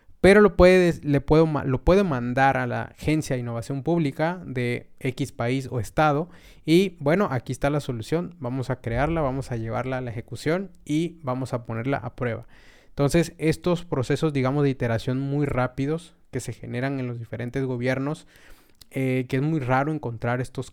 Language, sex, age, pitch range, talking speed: Spanish, male, 20-39, 125-150 Hz, 170 wpm